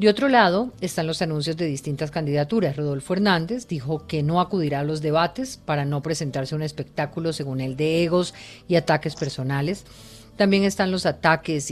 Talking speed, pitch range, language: 175 wpm, 145-180 Hz, Spanish